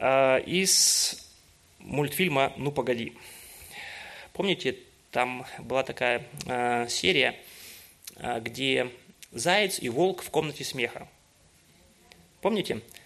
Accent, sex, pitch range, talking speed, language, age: native, male, 135-195 Hz, 85 wpm, Russian, 30-49